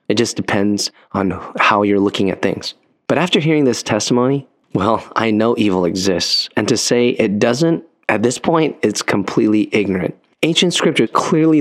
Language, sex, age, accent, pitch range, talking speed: English, male, 20-39, American, 100-125 Hz, 170 wpm